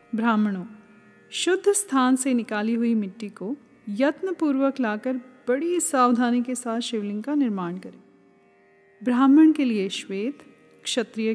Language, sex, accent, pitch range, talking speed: Hindi, female, native, 210-270 Hz, 125 wpm